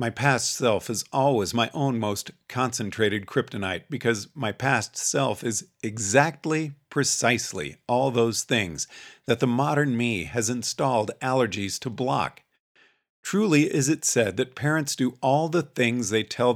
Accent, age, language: American, 50-69, English